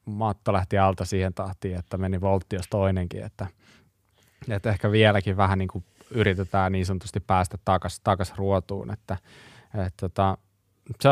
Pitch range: 95-110 Hz